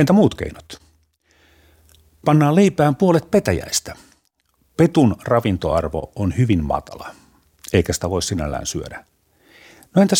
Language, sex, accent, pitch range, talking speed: Finnish, male, native, 80-120 Hz, 110 wpm